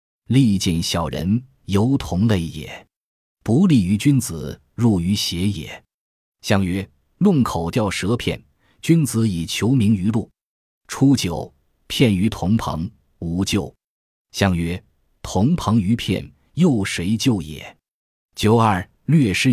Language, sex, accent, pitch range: Chinese, male, native, 85-115 Hz